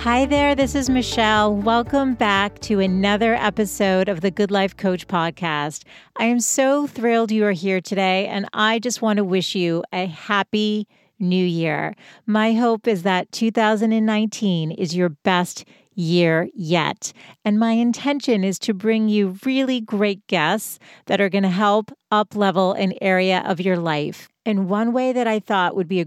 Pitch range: 185-220 Hz